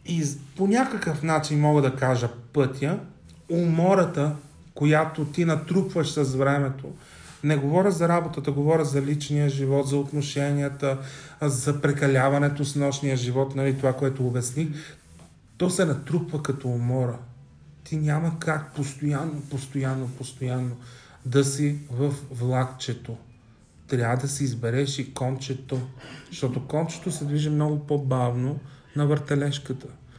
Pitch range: 125-150 Hz